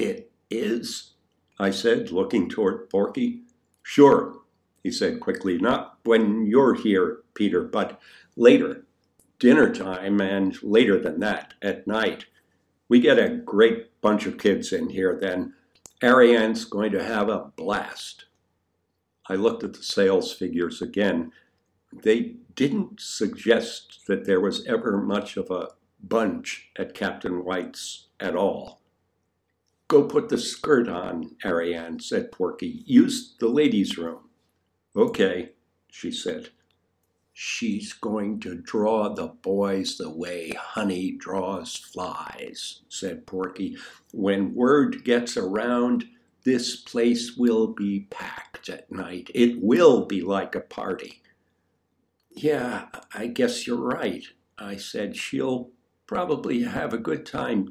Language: English